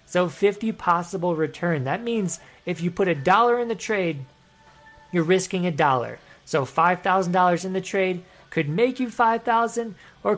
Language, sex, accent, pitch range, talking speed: English, male, American, 155-195 Hz, 160 wpm